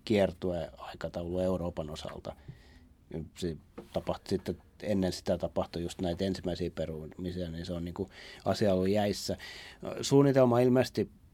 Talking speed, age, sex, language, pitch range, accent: 110 wpm, 30-49, male, Finnish, 95-110 Hz, native